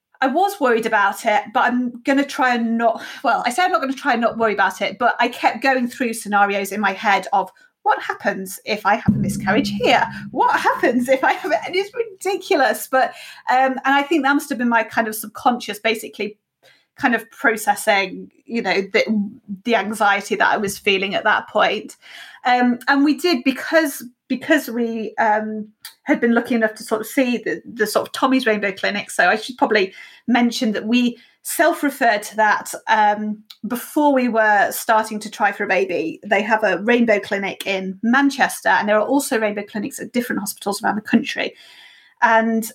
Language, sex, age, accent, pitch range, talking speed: English, female, 30-49, British, 210-265 Hz, 200 wpm